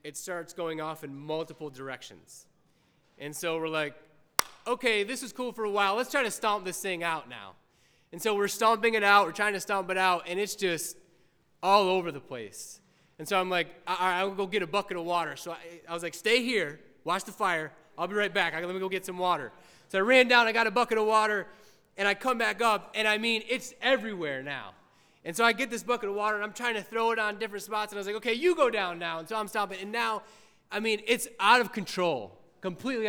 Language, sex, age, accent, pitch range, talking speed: English, male, 20-39, American, 160-215 Hz, 250 wpm